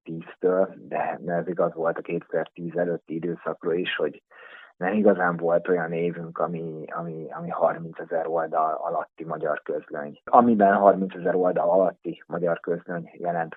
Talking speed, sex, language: 150 wpm, male, Hungarian